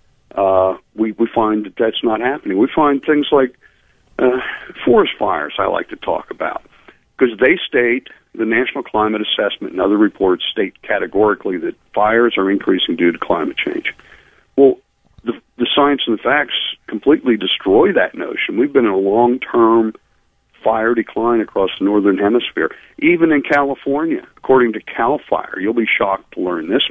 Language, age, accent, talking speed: English, 50-69, American, 165 wpm